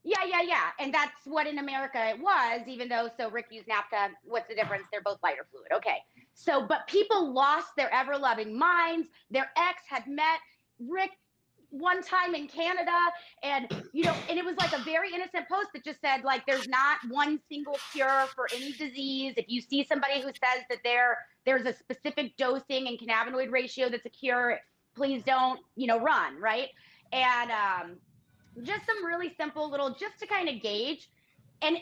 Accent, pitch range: American, 250-335 Hz